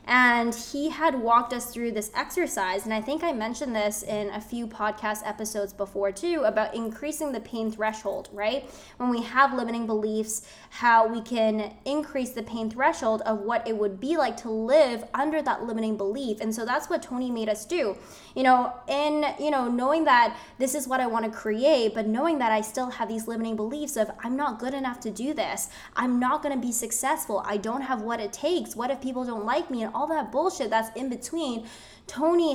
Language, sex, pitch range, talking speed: English, female, 225-280 Hz, 210 wpm